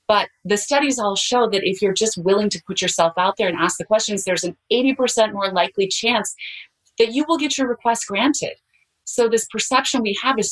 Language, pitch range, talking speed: English, 175-245 Hz, 215 wpm